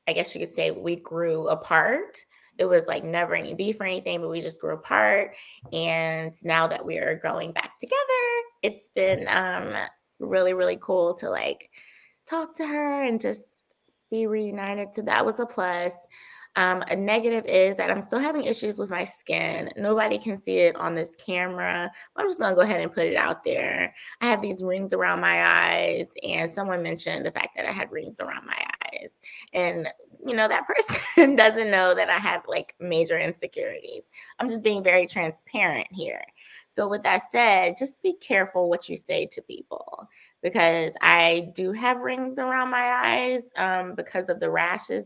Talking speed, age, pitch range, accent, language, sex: 190 wpm, 20-39, 170-255 Hz, American, English, female